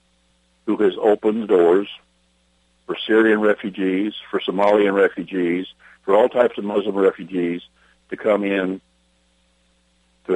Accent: American